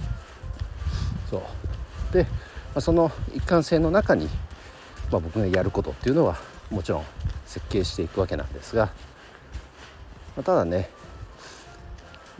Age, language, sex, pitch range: 50-69, Japanese, male, 80-110 Hz